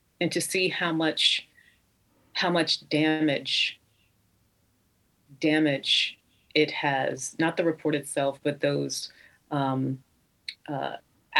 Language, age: English, 30-49